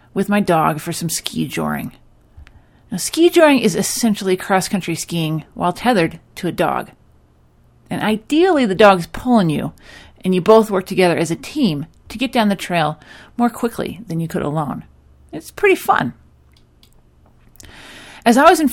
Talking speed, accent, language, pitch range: 155 wpm, American, English, 175-240 Hz